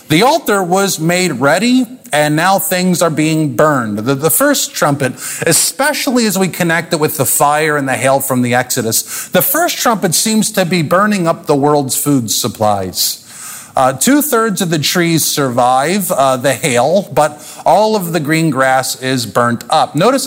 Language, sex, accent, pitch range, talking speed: English, male, American, 130-180 Hz, 180 wpm